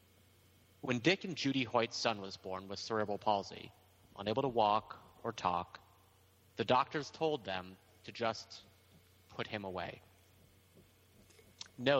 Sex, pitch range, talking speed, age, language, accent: male, 95-115 Hz, 130 wpm, 30-49, English, American